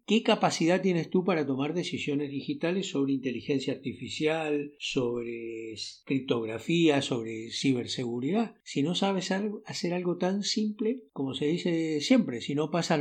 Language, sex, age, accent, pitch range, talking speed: Spanish, male, 60-79, Argentinian, 135-195 Hz, 135 wpm